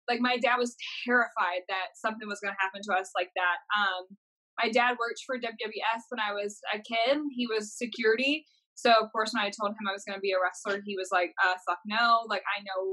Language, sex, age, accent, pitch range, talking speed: English, female, 10-29, American, 205-250 Hz, 240 wpm